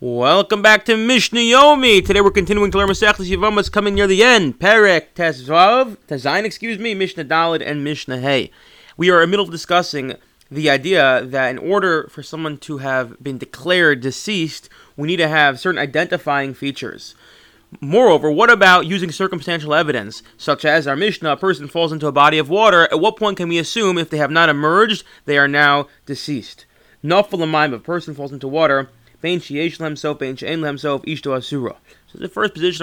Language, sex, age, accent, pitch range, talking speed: English, male, 30-49, American, 145-190 Hz, 175 wpm